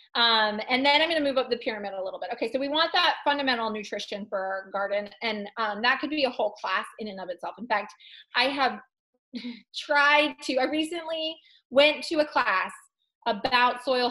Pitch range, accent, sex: 215-285 Hz, American, female